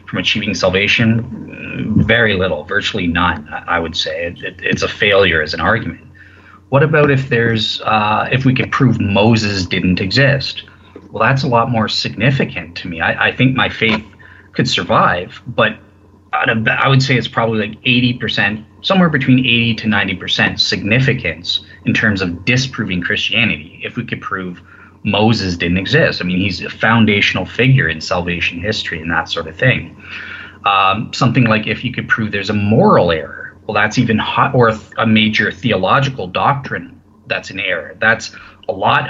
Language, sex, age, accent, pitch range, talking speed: English, male, 30-49, American, 95-120 Hz, 175 wpm